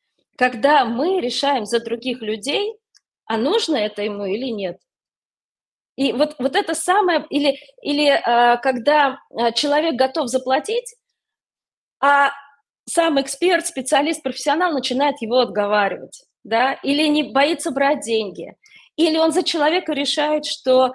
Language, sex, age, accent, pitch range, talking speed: Russian, female, 20-39, native, 225-300 Hz, 125 wpm